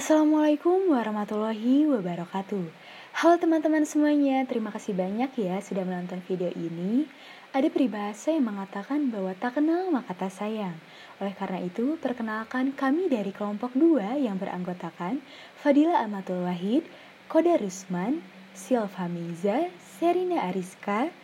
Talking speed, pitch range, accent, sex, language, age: 120 wpm, 200-285 Hz, native, female, Indonesian, 20-39